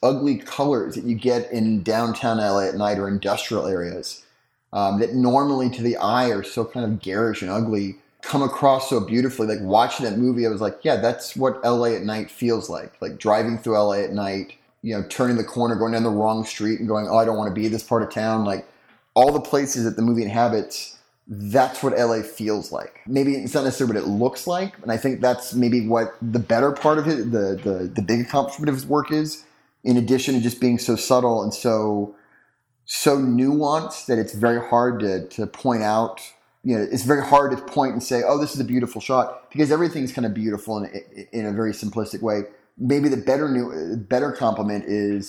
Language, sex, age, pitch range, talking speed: English, male, 20-39, 110-130 Hz, 215 wpm